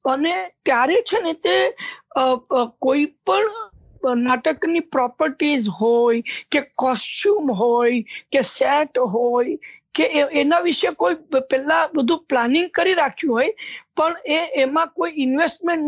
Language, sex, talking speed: English, female, 100 wpm